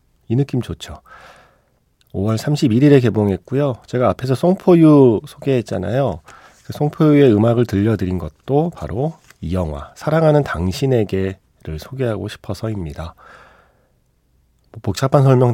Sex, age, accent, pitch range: male, 40-59, native, 90-135 Hz